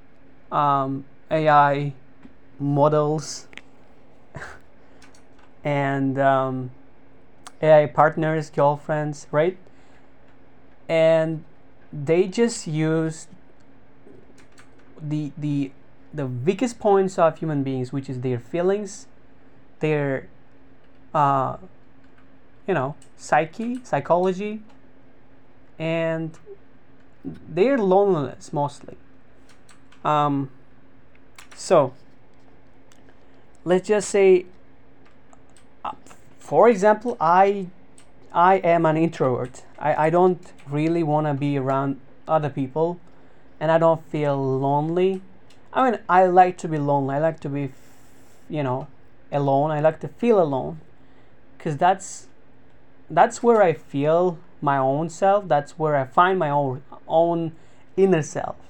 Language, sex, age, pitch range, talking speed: English, male, 30-49, 135-165 Hz, 100 wpm